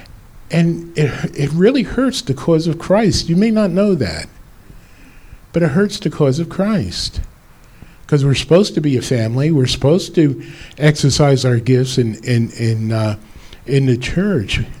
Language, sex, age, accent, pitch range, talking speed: English, male, 50-69, American, 120-170 Hz, 165 wpm